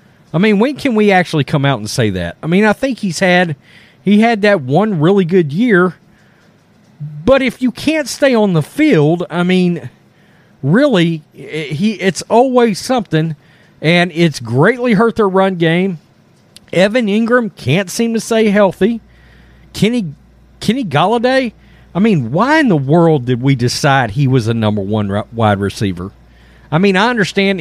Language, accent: English, American